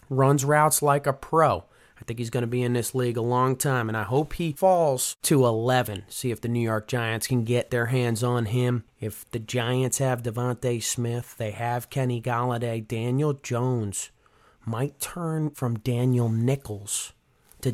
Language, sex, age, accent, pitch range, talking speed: English, male, 30-49, American, 120-155 Hz, 185 wpm